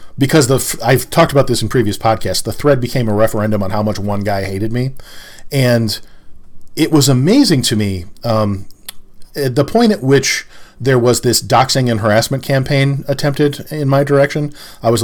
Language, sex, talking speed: English, male, 185 wpm